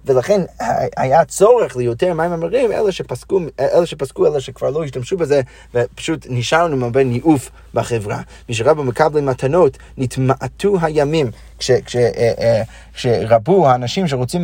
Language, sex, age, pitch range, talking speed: Hebrew, male, 30-49, 125-160 Hz, 125 wpm